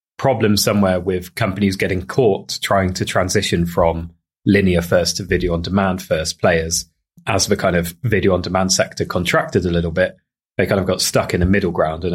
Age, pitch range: 20-39, 90-110 Hz